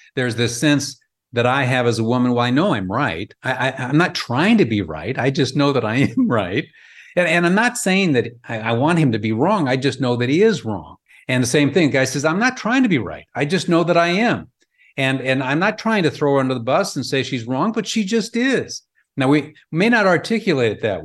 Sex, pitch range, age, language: male, 125-160 Hz, 50-69, English